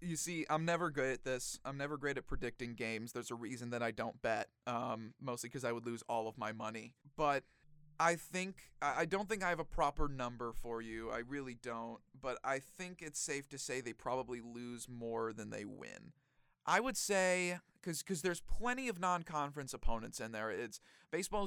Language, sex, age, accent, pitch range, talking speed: English, male, 30-49, American, 125-175 Hz, 200 wpm